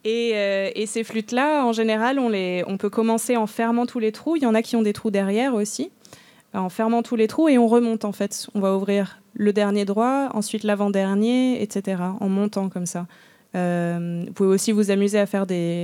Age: 20-39